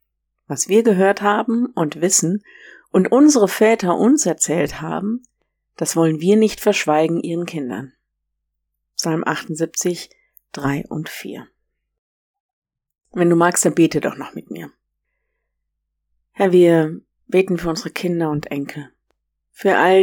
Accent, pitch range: German, 160-195 Hz